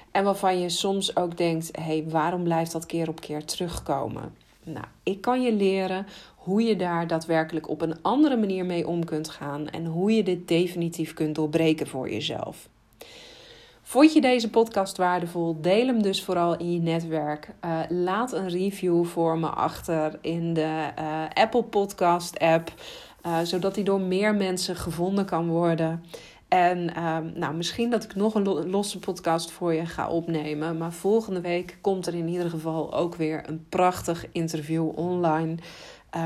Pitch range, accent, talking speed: 165-195 Hz, Dutch, 165 wpm